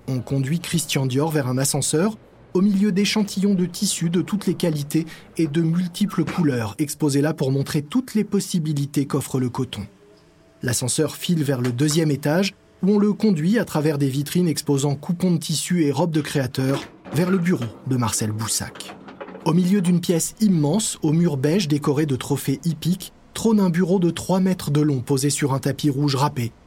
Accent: French